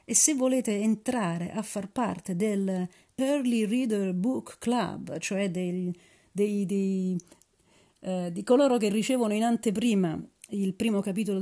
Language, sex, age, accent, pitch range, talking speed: Italian, female, 40-59, native, 180-220 Hz, 135 wpm